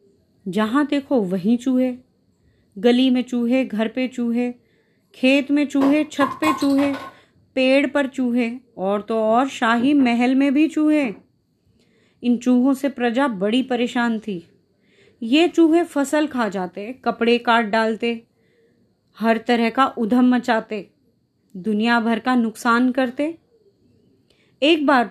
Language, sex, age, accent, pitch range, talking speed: Hindi, female, 20-39, native, 220-275 Hz, 130 wpm